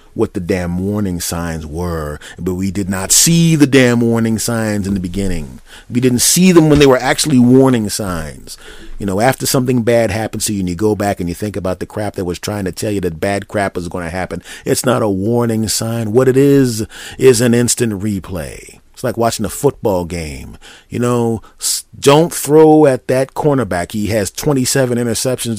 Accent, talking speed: American, 205 wpm